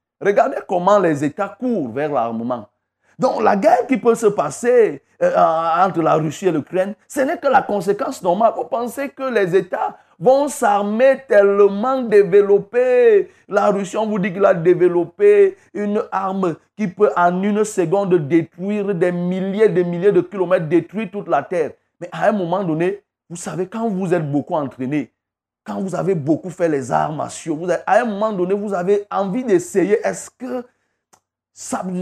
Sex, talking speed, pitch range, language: male, 175 wpm, 175-230 Hz, French